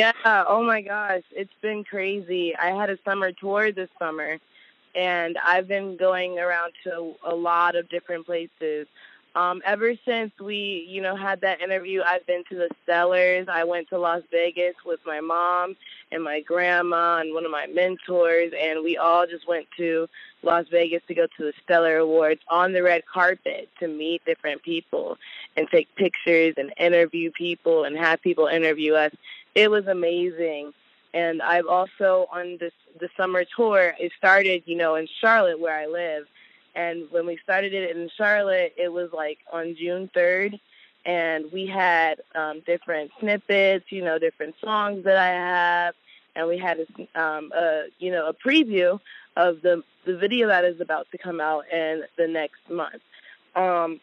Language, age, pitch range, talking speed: English, 20-39, 165-190 Hz, 175 wpm